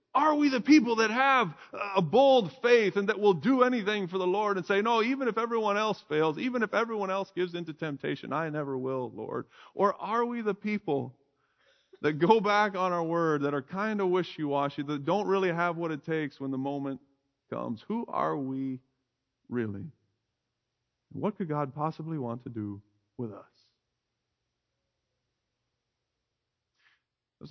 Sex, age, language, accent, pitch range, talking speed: male, 40-59, English, American, 125-180 Hz, 170 wpm